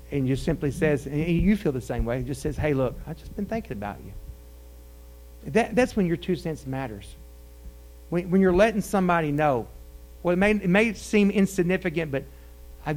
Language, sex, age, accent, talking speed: English, male, 50-69, American, 200 wpm